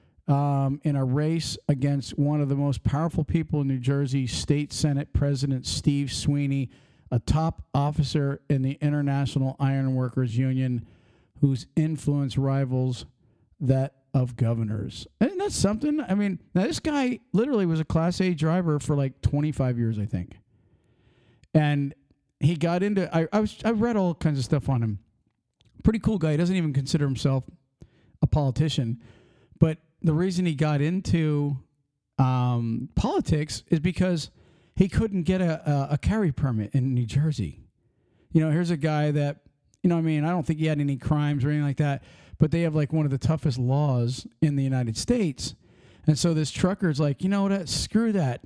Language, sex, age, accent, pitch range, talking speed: English, male, 50-69, American, 135-170 Hz, 180 wpm